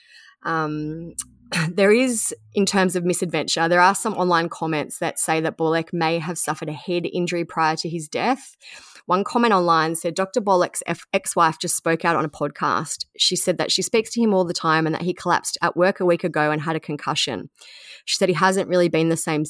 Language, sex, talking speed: English, female, 220 wpm